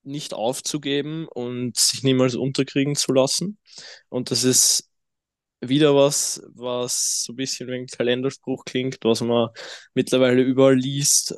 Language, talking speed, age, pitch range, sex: German, 135 wpm, 20-39, 115-135 Hz, male